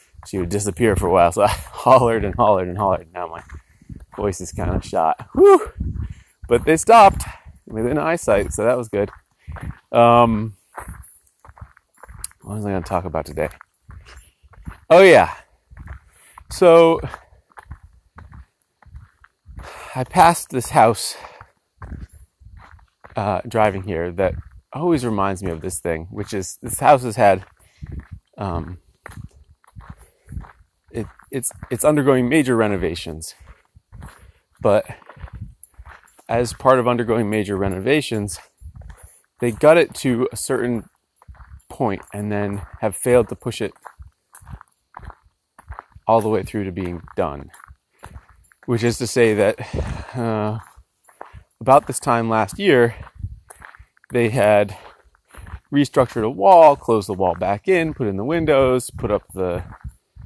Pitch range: 90-120 Hz